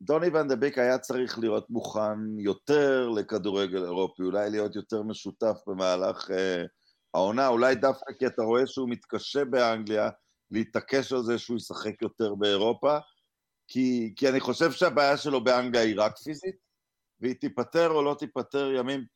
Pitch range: 105-135 Hz